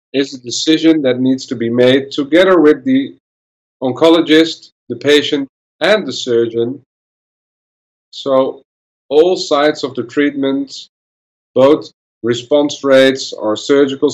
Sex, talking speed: male, 120 wpm